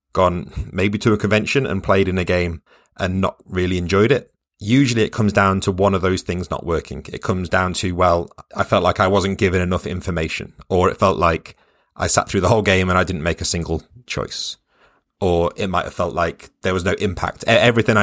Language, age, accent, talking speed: German, 30-49, British, 225 wpm